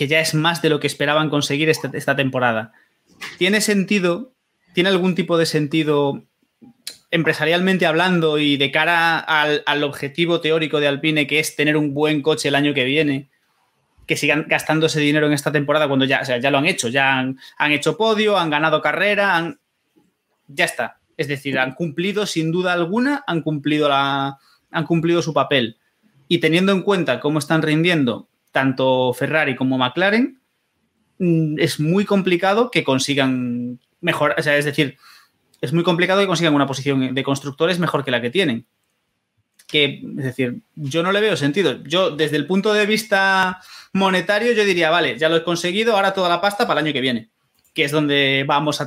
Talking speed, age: 180 wpm, 20-39